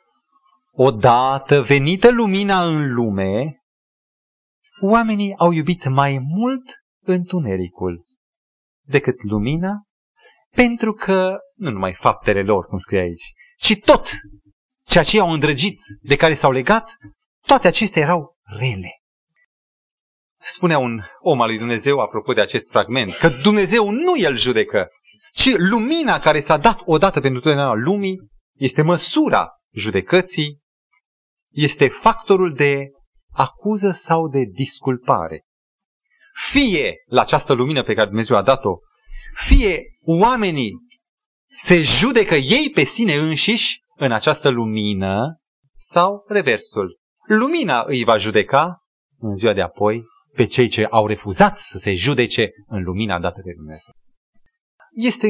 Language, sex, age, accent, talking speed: Romanian, male, 30-49, native, 125 wpm